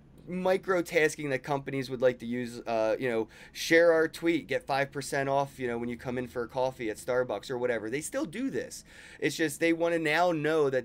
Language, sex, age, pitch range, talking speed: English, male, 30-49, 115-140 Hz, 230 wpm